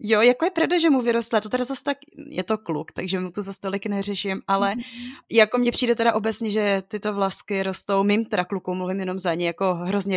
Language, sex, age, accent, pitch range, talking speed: Czech, female, 30-49, native, 195-240 Hz, 230 wpm